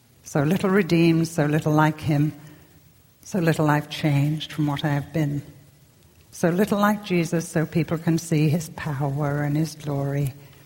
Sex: female